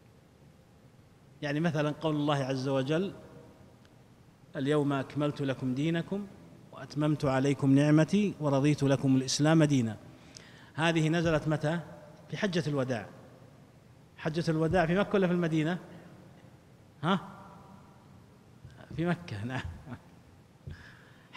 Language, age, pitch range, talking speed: Arabic, 30-49, 135-175 Hz, 95 wpm